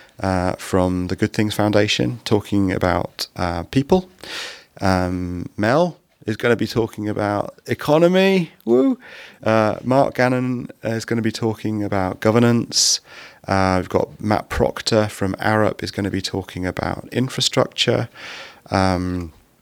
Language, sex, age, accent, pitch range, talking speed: English, male, 30-49, British, 90-110 Hz, 140 wpm